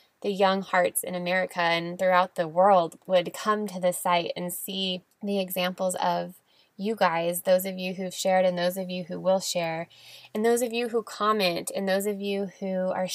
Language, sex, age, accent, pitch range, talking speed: English, female, 20-39, American, 175-195 Hz, 205 wpm